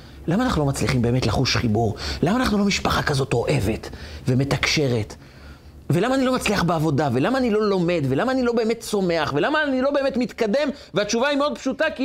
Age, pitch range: 40-59, 110-185 Hz